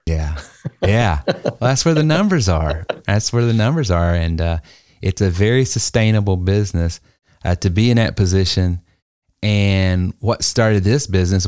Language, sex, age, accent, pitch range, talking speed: English, male, 30-49, American, 85-105 Hz, 155 wpm